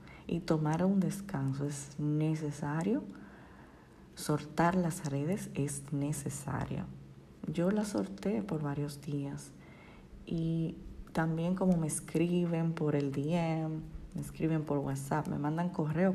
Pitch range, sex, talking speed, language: 145-175 Hz, female, 120 wpm, Spanish